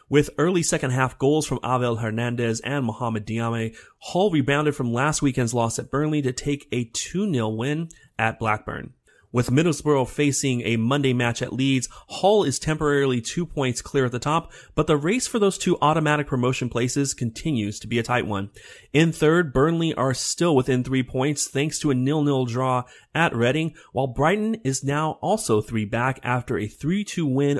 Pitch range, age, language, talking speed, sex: 115-155 Hz, 30-49, English, 180 wpm, male